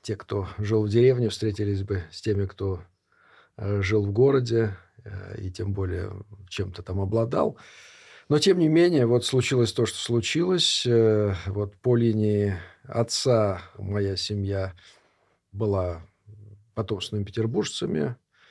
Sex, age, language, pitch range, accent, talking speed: male, 50-69, Russian, 100-115 Hz, native, 120 wpm